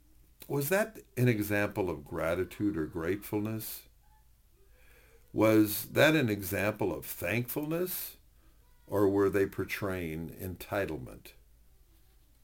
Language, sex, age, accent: English, male, 60-79, American